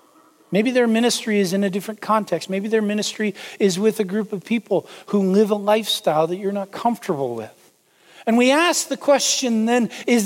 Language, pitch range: English, 180-230 Hz